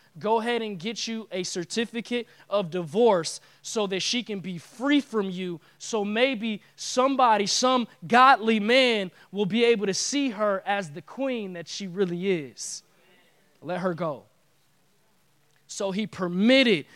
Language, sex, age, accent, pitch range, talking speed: English, male, 20-39, American, 155-215 Hz, 150 wpm